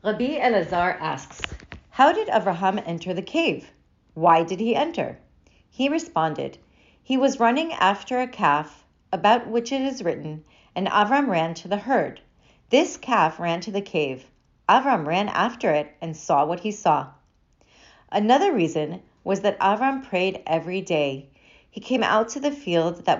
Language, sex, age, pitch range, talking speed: English, female, 40-59, 170-250 Hz, 160 wpm